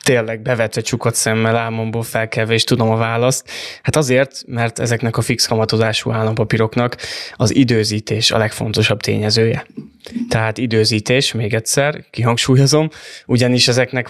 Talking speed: 125 wpm